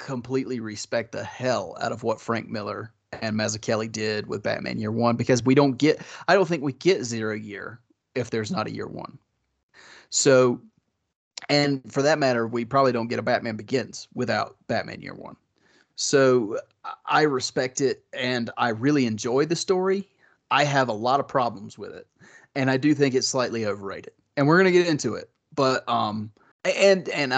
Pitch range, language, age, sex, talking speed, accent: 115-145 Hz, English, 30-49, male, 185 wpm, American